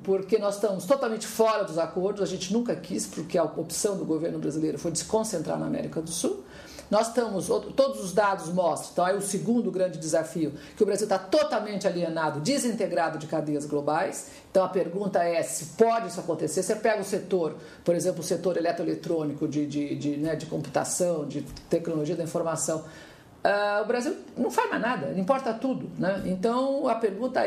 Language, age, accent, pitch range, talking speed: Portuguese, 50-69, Brazilian, 165-225 Hz, 195 wpm